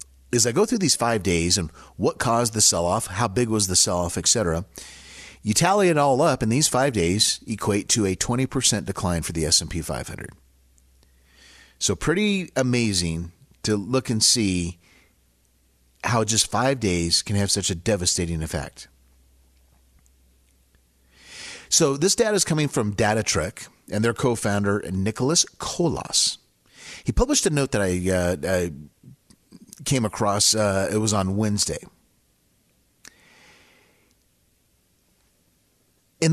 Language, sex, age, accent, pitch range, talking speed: English, male, 40-59, American, 85-120 Hz, 135 wpm